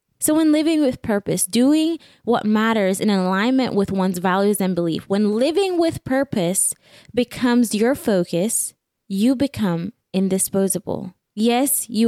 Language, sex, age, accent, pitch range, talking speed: English, female, 20-39, American, 185-250 Hz, 135 wpm